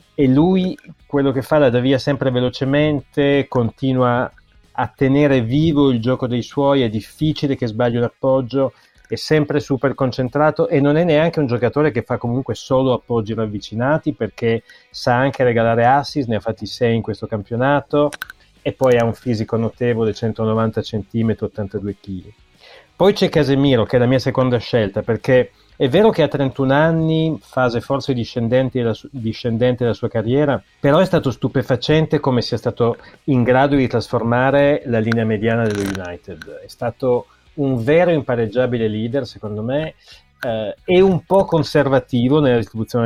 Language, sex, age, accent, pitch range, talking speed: Italian, male, 30-49, native, 115-140 Hz, 165 wpm